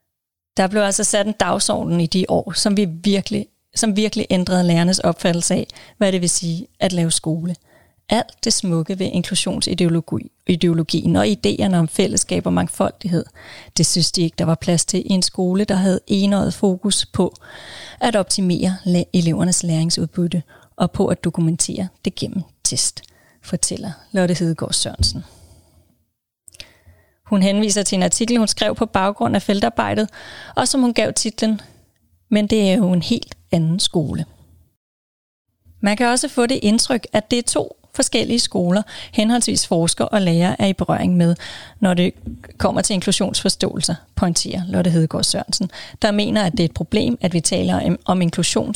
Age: 30-49